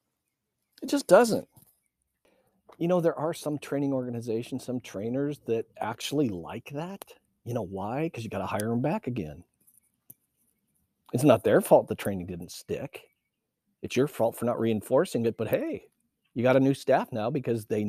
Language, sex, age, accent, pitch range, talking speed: English, male, 50-69, American, 105-130 Hz, 170 wpm